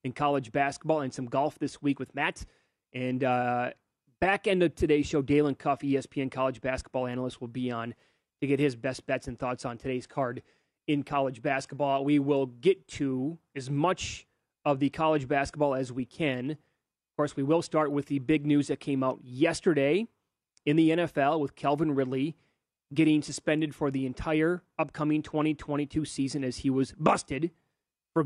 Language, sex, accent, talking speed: English, male, American, 180 wpm